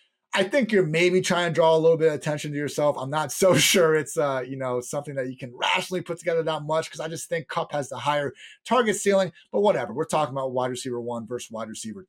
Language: English